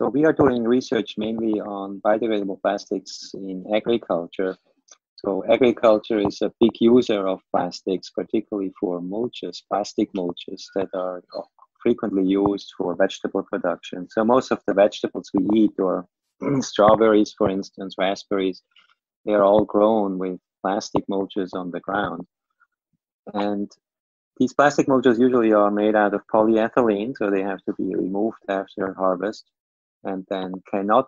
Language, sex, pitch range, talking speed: English, male, 95-110 Hz, 145 wpm